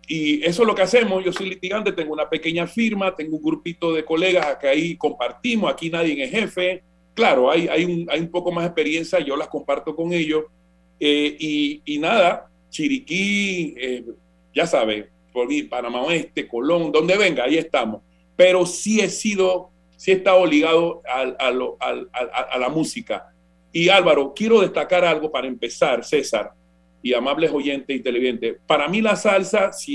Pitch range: 145-185 Hz